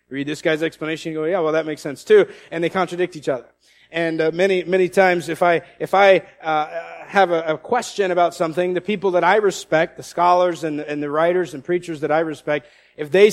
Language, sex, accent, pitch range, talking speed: English, male, American, 145-185 Hz, 230 wpm